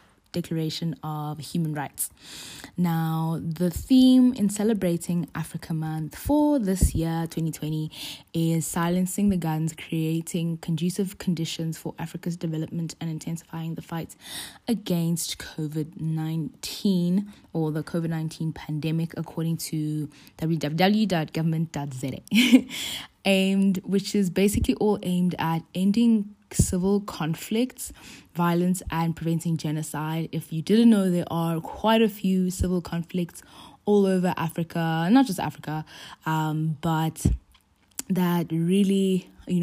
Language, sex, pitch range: English, female, 160-185 Hz